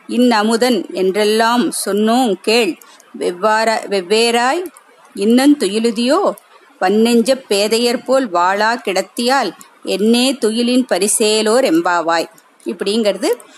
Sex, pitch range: female, 215-265 Hz